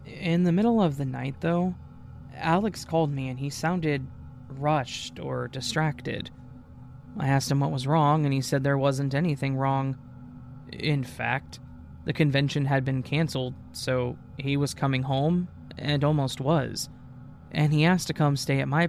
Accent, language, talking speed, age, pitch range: American, English, 165 wpm, 20-39, 130-155 Hz